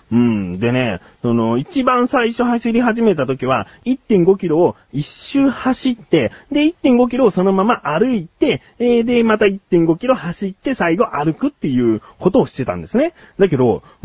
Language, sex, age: Japanese, male, 30-49